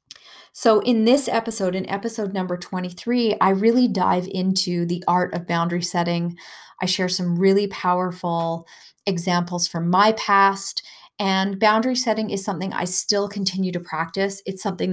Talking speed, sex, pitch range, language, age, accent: 155 wpm, female, 175-200 Hz, English, 30-49, American